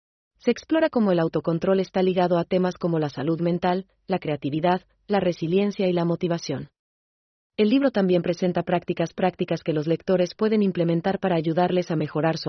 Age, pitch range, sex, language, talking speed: 30-49, 160-195 Hz, female, Spanish, 175 wpm